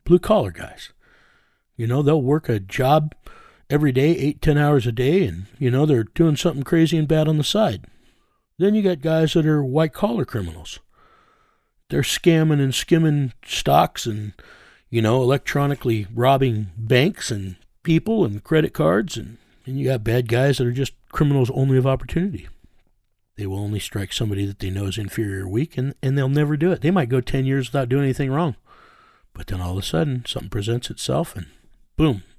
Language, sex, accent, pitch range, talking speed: English, male, American, 105-150 Hz, 195 wpm